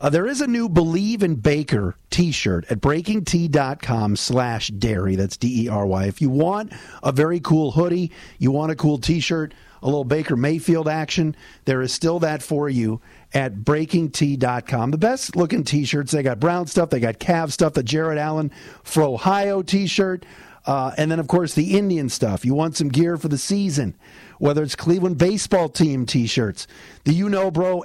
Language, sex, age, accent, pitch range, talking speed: English, male, 50-69, American, 130-175 Hz, 195 wpm